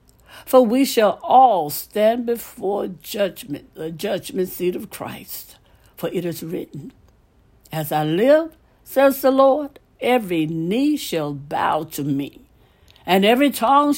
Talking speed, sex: 135 wpm, female